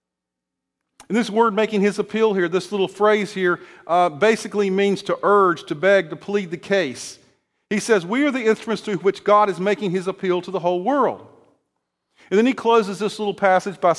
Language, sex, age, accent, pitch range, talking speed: English, male, 50-69, American, 160-210 Hz, 200 wpm